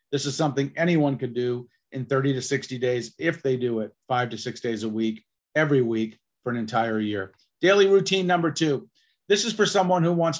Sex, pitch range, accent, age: male, 120-155 Hz, American, 40-59